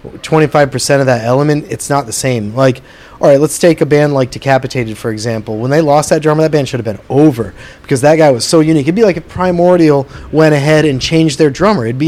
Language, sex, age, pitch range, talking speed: English, male, 30-49, 130-160 Hz, 250 wpm